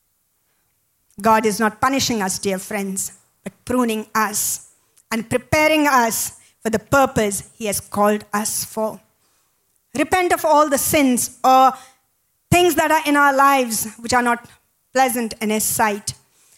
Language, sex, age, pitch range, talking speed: English, female, 50-69, 240-315 Hz, 145 wpm